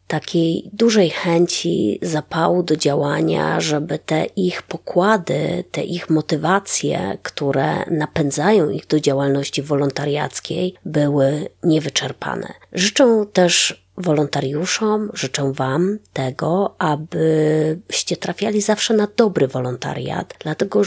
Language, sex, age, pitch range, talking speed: Polish, female, 20-39, 140-180 Hz, 100 wpm